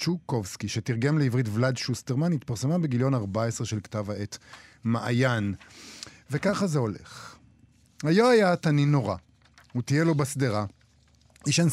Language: Hebrew